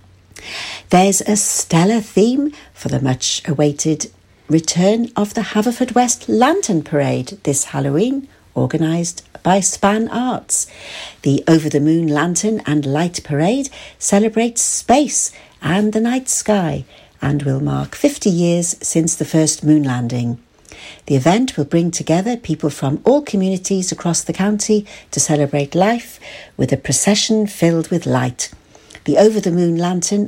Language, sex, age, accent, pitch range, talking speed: English, female, 60-79, British, 145-215 Hz, 140 wpm